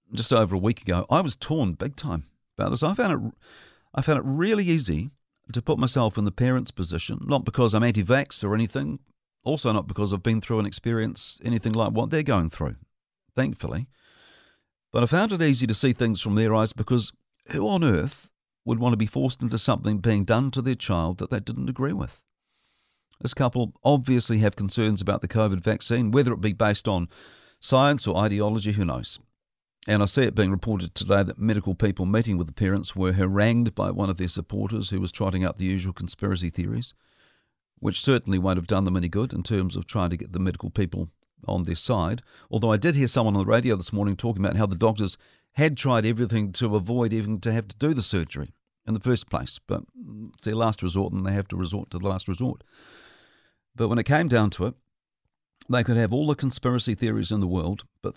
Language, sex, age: English, male, 50-69